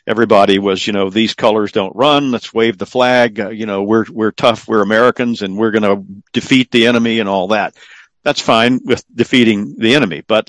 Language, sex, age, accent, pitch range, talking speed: English, male, 50-69, American, 105-125 Hz, 210 wpm